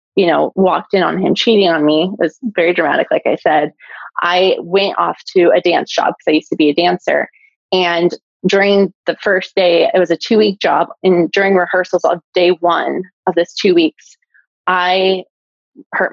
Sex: female